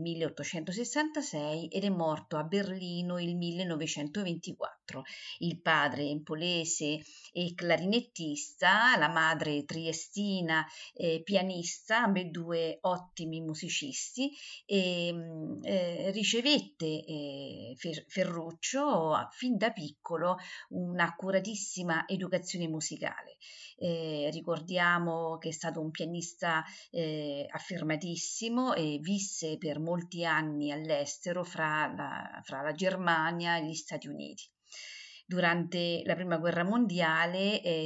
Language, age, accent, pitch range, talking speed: Italian, 50-69, native, 160-195 Hz, 105 wpm